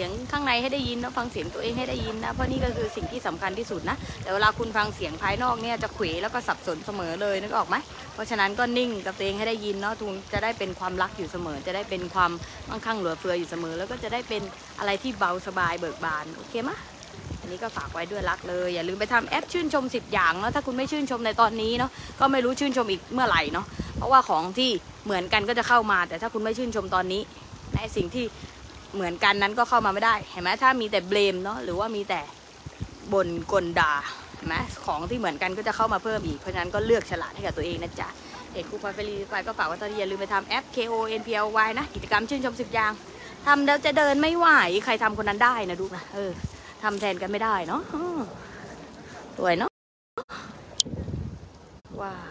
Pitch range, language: 190-240 Hz, English